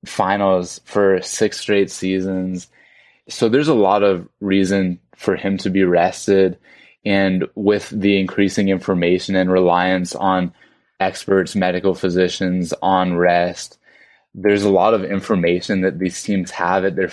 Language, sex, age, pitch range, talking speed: English, male, 20-39, 95-110 Hz, 140 wpm